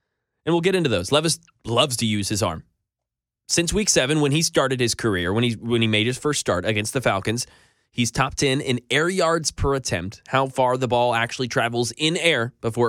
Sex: male